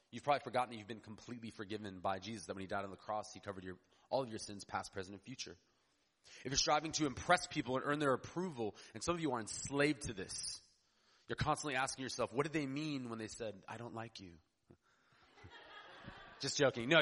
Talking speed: 220 wpm